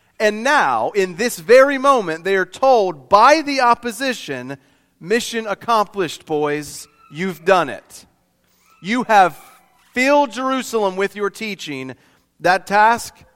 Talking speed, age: 120 wpm, 40-59